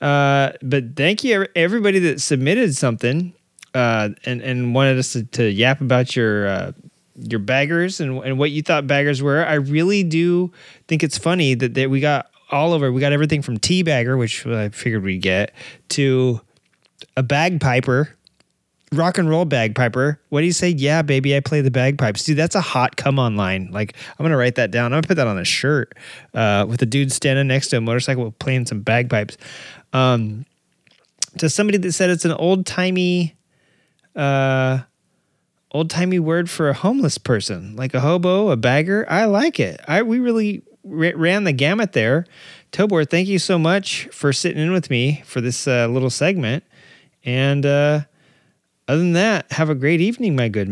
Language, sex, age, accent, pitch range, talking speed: English, male, 20-39, American, 125-165 Hz, 190 wpm